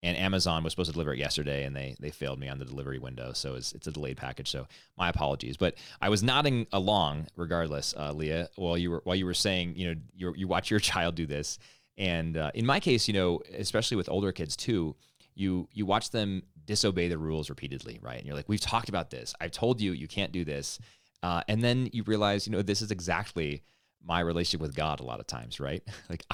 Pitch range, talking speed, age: 75-95 Hz, 245 wpm, 30-49